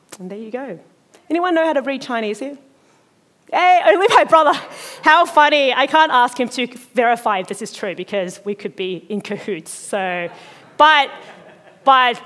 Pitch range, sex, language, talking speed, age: 200-265 Hz, female, English, 170 wpm, 30-49